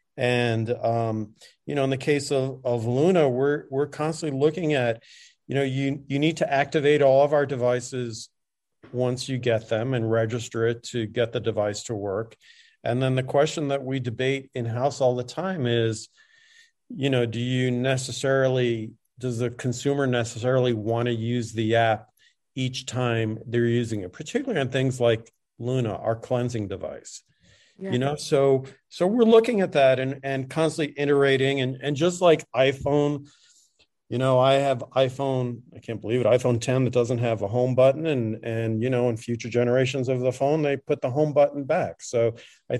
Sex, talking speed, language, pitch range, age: male, 180 wpm, English, 120-140 Hz, 40-59